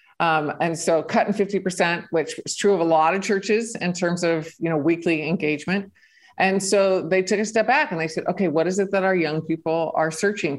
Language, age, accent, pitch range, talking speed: English, 50-69, American, 155-195 Hz, 230 wpm